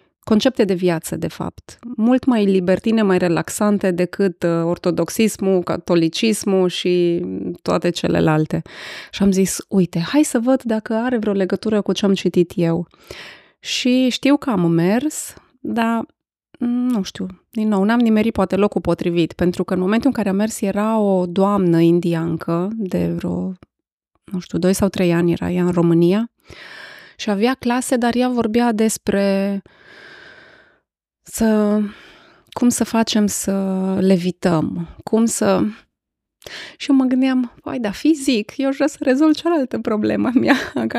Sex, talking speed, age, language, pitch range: female, 150 wpm, 20-39, Romanian, 175-230 Hz